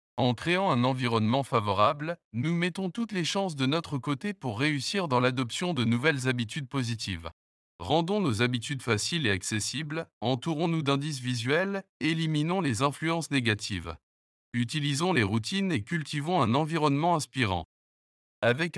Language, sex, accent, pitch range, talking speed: French, male, French, 115-165 Hz, 135 wpm